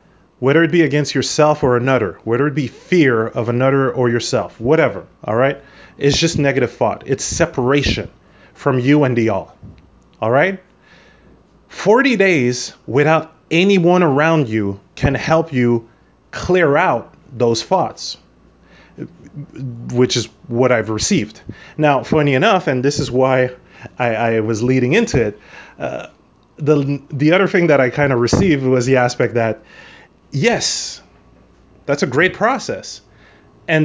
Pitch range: 120-160 Hz